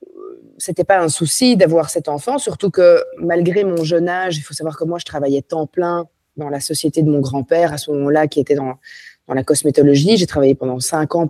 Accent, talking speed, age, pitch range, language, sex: French, 230 wpm, 20-39, 140-170 Hz, French, female